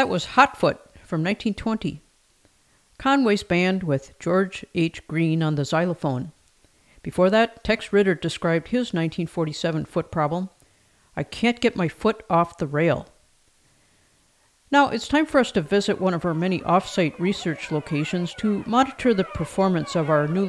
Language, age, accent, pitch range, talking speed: English, 50-69, American, 165-235 Hz, 155 wpm